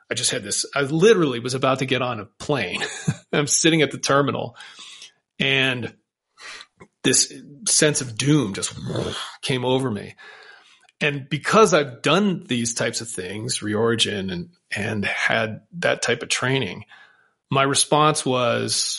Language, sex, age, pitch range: English, male, 30-49, 120-150 Hz